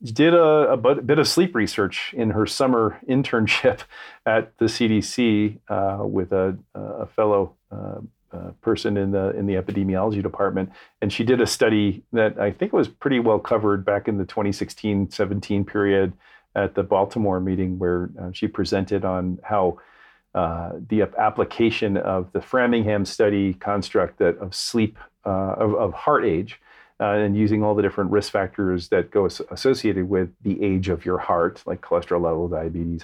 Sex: male